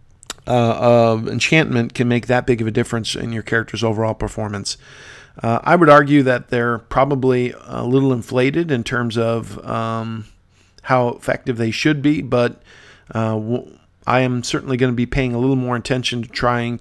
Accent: American